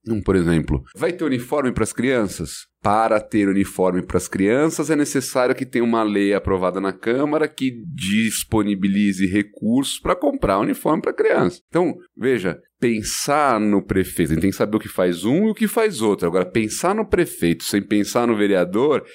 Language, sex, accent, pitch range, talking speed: Portuguese, male, Brazilian, 95-140 Hz, 185 wpm